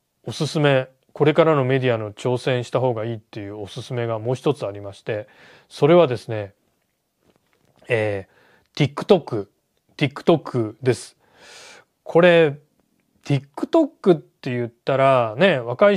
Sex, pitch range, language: male, 125-175 Hz, Japanese